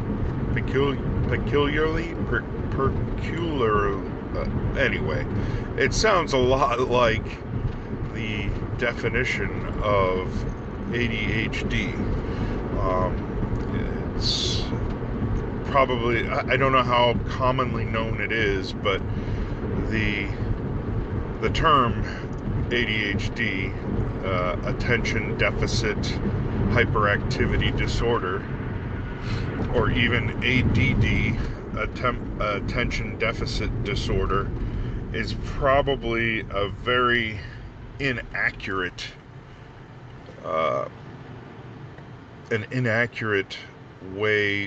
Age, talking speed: 50-69, 65 wpm